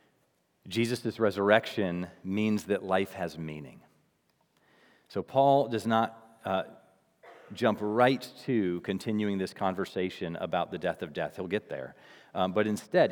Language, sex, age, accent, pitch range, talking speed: English, male, 40-59, American, 95-130 Hz, 135 wpm